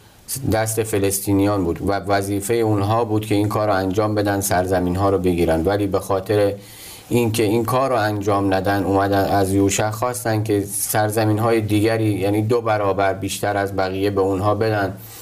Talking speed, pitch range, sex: 160 wpm, 95-110 Hz, male